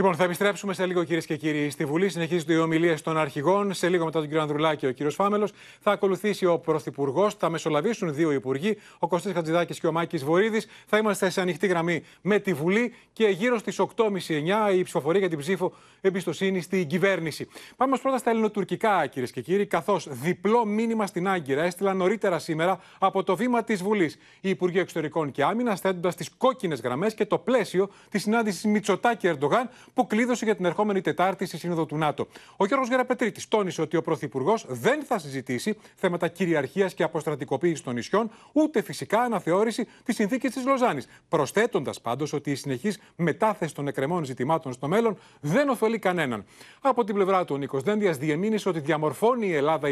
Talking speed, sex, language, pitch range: 185 wpm, male, Greek, 160-210 Hz